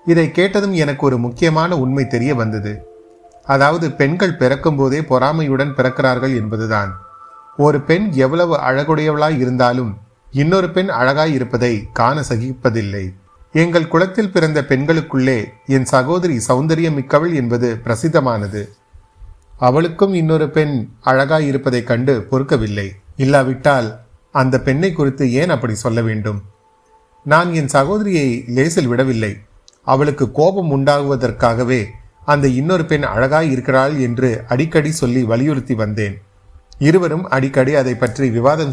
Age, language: 30-49, Tamil